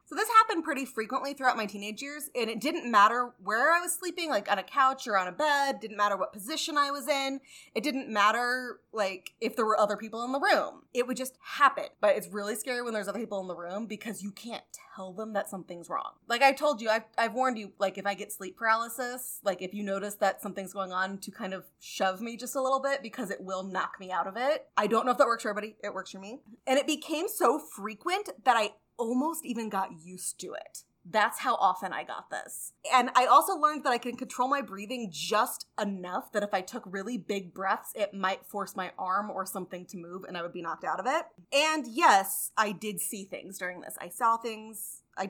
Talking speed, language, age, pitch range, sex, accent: 245 wpm, English, 20-39, 200-270 Hz, female, American